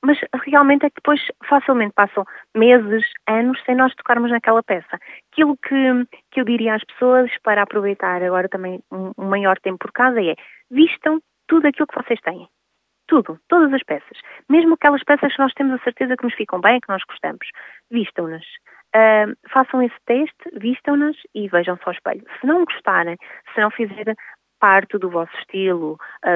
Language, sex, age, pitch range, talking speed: Portuguese, female, 30-49, 195-265 Hz, 180 wpm